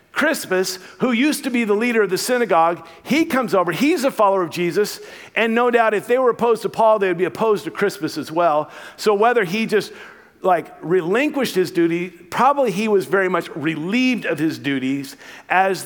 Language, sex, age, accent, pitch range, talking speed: English, male, 50-69, American, 155-220 Hz, 200 wpm